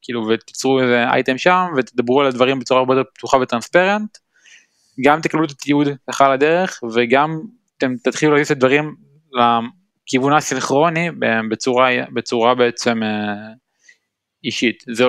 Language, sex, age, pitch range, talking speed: Hebrew, male, 20-39, 120-150 Hz, 125 wpm